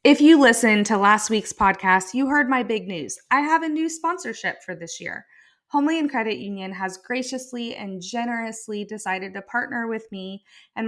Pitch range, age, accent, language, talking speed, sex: 180-220 Hz, 20-39, American, English, 180 wpm, female